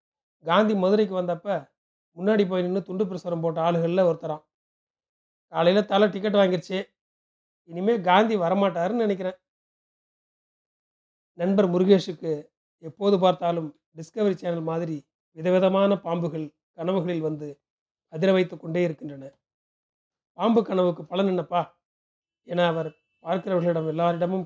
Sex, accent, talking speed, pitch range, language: male, native, 105 wpm, 170-200 Hz, Tamil